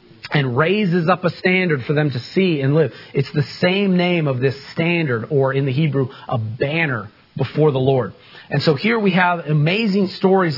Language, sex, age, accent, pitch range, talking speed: English, male, 40-59, American, 135-170 Hz, 195 wpm